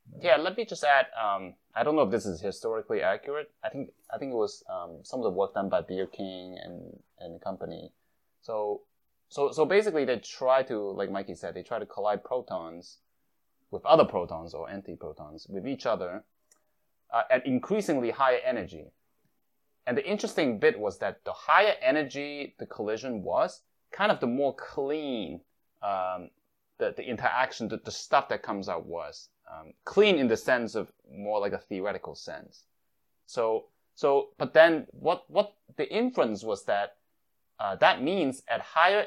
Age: 20-39